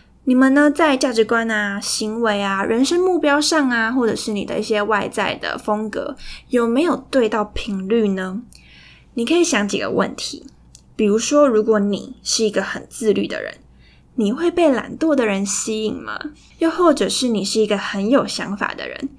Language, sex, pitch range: Chinese, female, 205-265 Hz